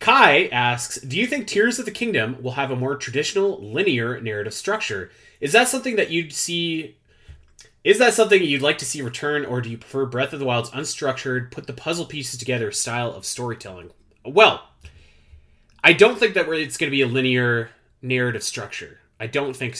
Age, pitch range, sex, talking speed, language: 30-49, 120-175 Hz, male, 190 wpm, English